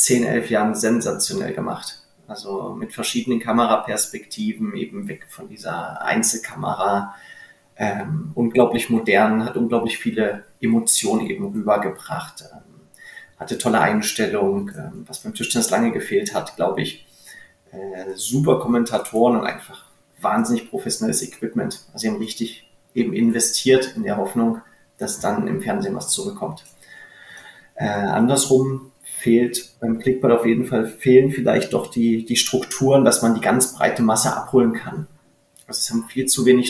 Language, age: German, 30-49